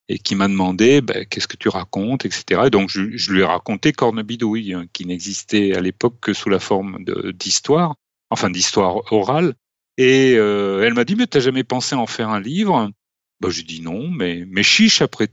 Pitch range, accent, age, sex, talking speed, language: 100-140 Hz, French, 40-59, male, 210 wpm, French